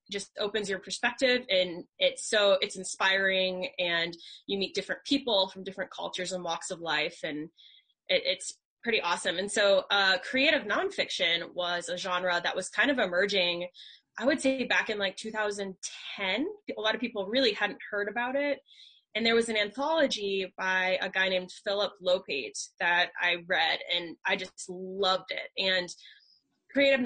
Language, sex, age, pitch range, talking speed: English, female, 10-29, 185-235 Hz, 165 wpm